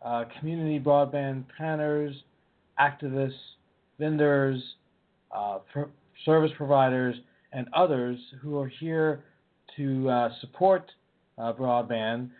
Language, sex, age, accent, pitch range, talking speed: English, male, 50-69, American, 120-145 Hz, 90 wpm